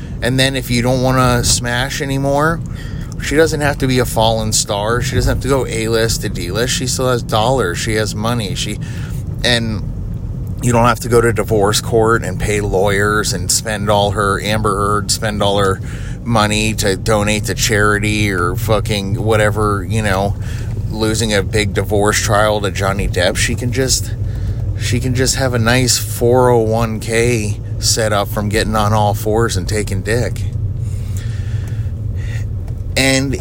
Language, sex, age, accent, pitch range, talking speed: English, male, 30-49, American, 105-125 Hz, 165 wpm